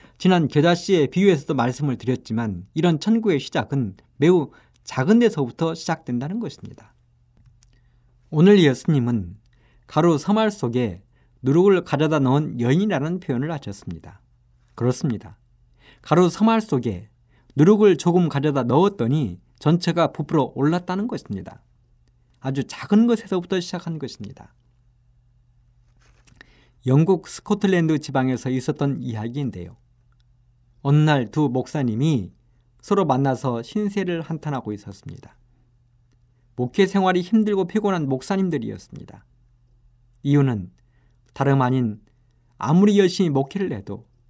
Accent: native